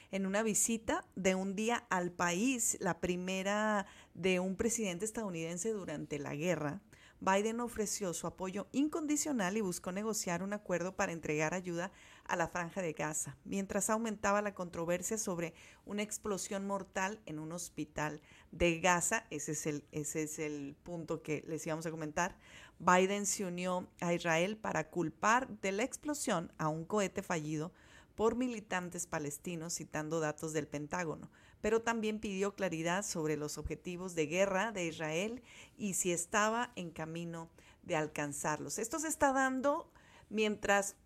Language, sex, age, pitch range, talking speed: Spanish, female, 40-59, 170-215 Hz, 150 wpm